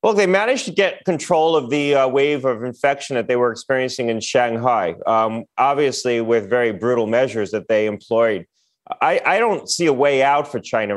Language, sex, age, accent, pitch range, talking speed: English, male, 30-49, American, 115-135 Hz, 195 wpm